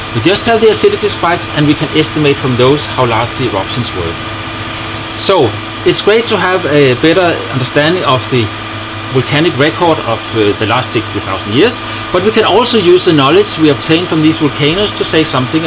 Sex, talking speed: male, 190 wpm